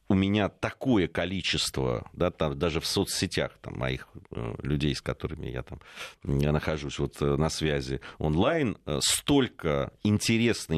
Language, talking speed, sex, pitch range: Russian, 150 wpm, male, 70-100 Hz